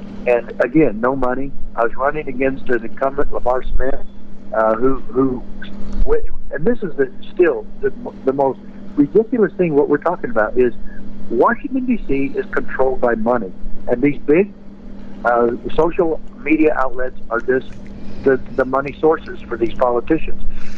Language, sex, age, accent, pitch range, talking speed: English, male, 60-79, American, 125-205 Hz, 150 wpm